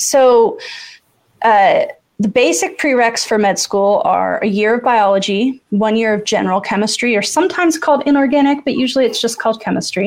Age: 20-39